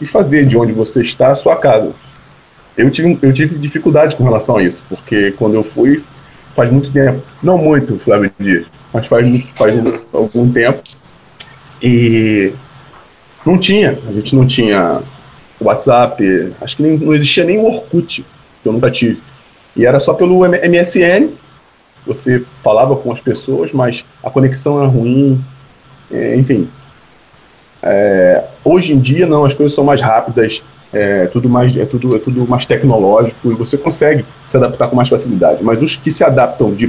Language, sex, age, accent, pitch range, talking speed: Portuguese, male, 20-39, Brazilian, 120-155 Hz, 170 wpm